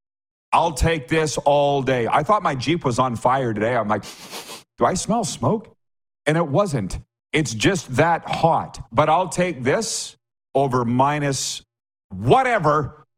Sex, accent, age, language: male, American, 50-69, English